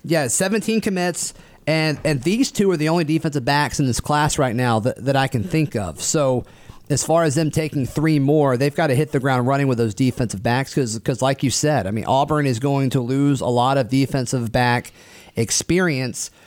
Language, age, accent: English, 30-49, American